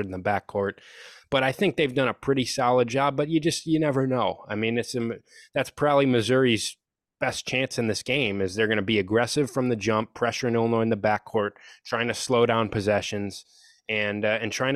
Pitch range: 100-115 Hz